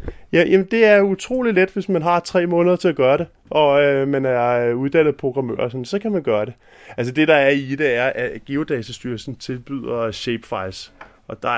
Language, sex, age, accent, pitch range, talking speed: Danish, male, 20-39, native, 110-140 Hz, 205 wpm